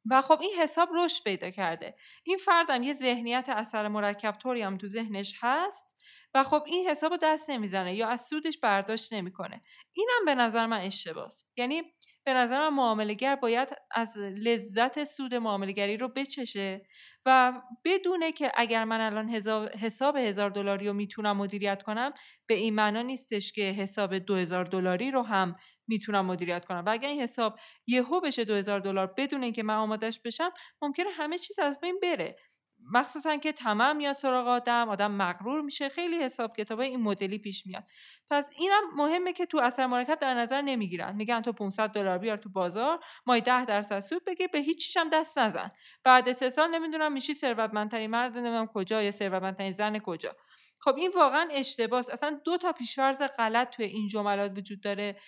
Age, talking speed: 30-49, 180 wpm